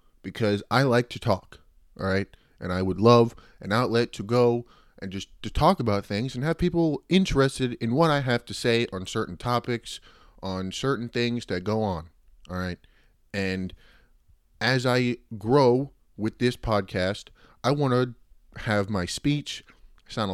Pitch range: 100-130 Hz